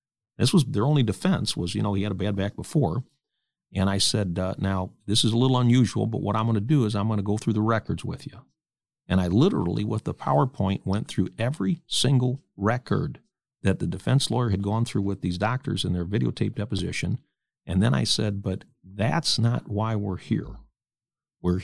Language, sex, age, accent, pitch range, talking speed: English, male, 50-69, American, 100-130 Hz, 210 wpm